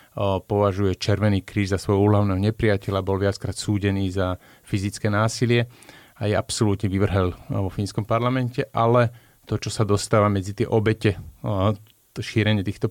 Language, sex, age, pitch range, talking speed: Slovak, male, 30-49, 100-115 Hz, 140 wpm